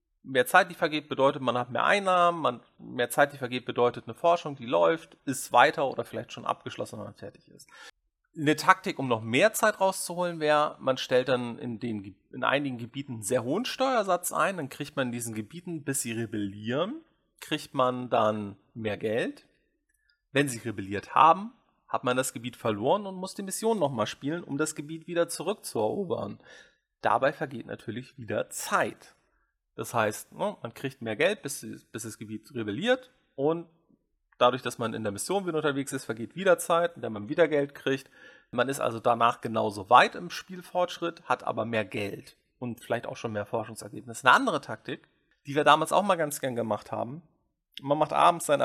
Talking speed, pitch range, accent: 185 wpm, 115-170 Hz, German